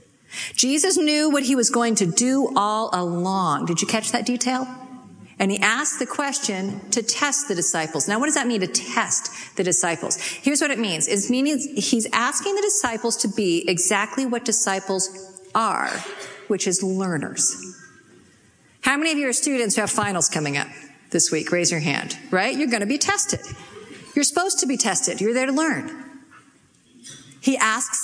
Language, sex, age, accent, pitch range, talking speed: English, female, 50-69, American, 190-275 Hz, 180 wpm